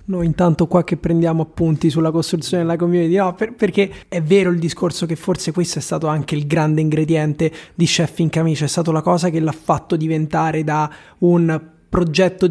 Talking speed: 190 wpm